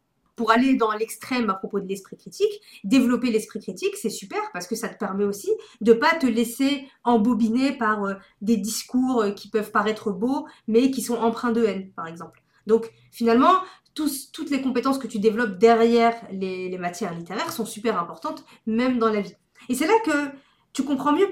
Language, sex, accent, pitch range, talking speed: French, female, French, 220-275 Hz, 195 wpm